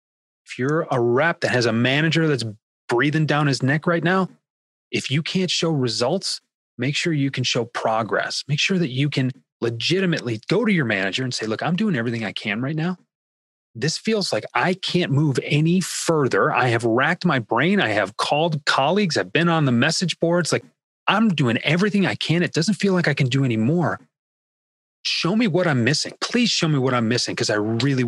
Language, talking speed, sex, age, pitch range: English, 210 wpm, male, 30-49, 120-170 Hz